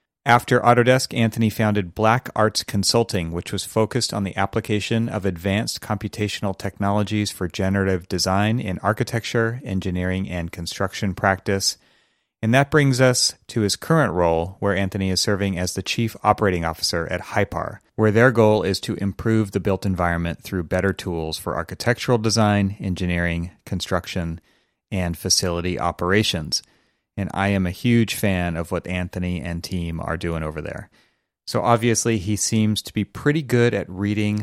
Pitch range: 90-115 Hz